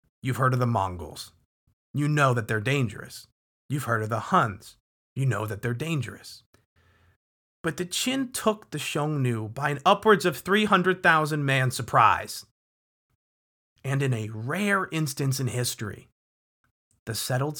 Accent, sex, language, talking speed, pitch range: American, male, English, 140 wpm, 110-145 Hz